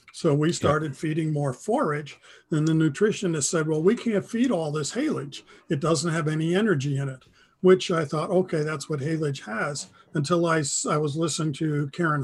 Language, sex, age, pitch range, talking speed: English, male, 50-69, 145-175 Hz, 190 wpm